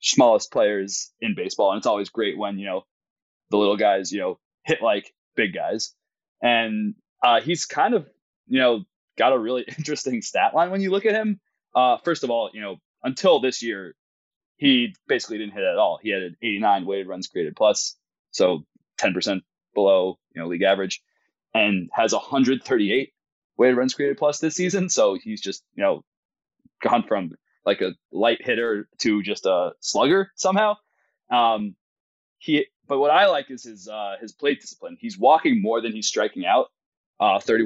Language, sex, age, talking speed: English, male, 20-39, 180 wpm